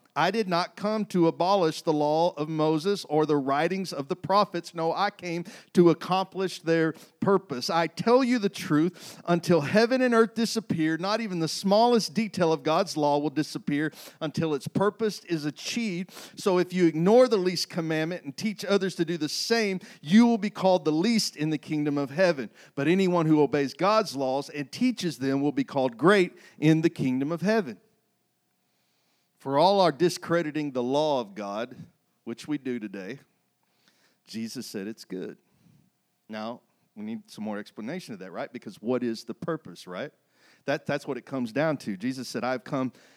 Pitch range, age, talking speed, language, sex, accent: 140-190 Hz, 50-69, 185 wpm, English, male, American